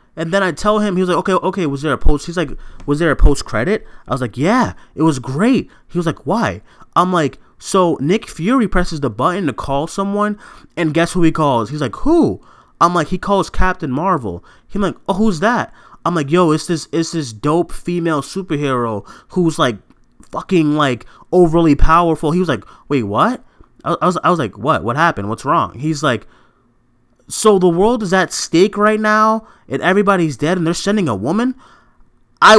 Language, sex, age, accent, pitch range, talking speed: English, male, 20-39, American, 155-245 Hz, 205 wpm